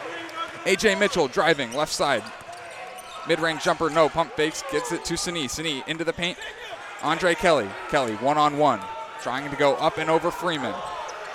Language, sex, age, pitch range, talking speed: English, male, 20-39, 140-180 Hz, 170 wpm